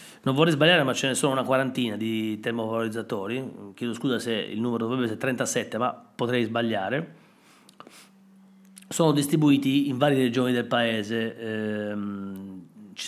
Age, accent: 30-49, native